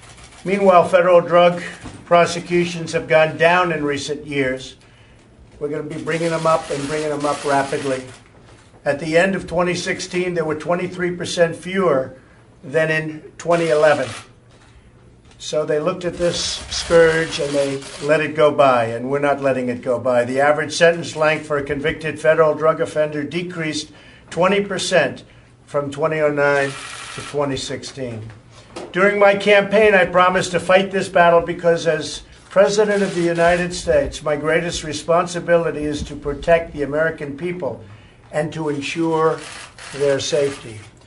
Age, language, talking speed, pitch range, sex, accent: 50-69, English, 150 wpm, 135-170 Hz, male, American